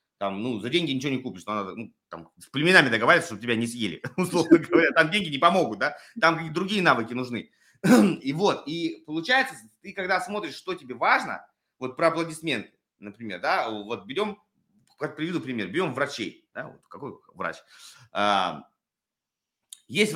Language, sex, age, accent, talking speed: Russian, male, 30-49, native, 160 wpm